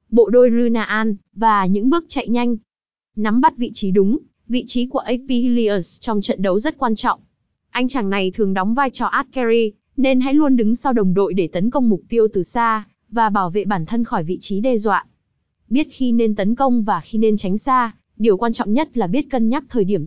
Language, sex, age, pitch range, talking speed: Vietnamese, female, 20-39, 200-245 Hz, 230 wpm